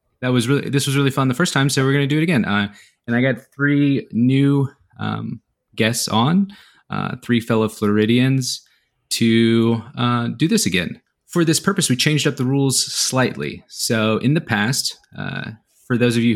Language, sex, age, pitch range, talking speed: English, male, 20-39, 105-135 Hz, 195 wpm